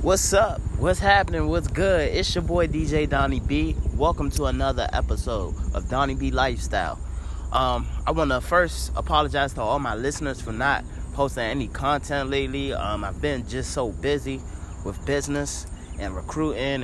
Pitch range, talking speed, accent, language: 100-135 Hz, 165 wpm, American, English